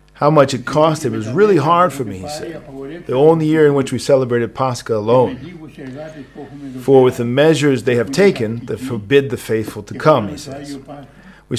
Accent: American